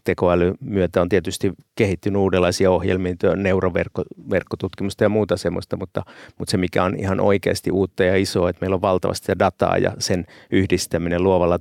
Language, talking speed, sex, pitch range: Finnish, 160 wpm, male, 95-105 Hz